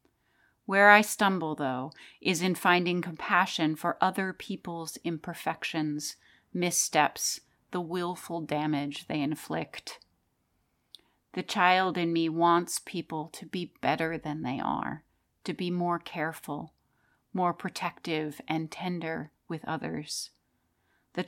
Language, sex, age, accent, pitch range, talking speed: English, female, 30-49, American, 155-180 Hz, 115 wpm